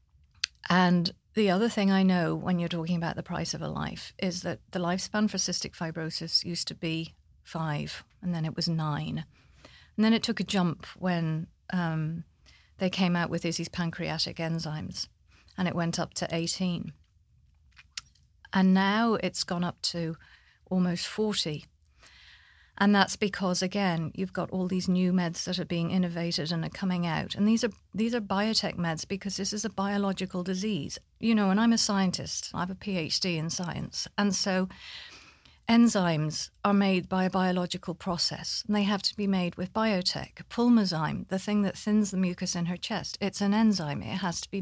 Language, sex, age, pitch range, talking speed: English, female, 40-59, 170-200 Hz, 185 wpm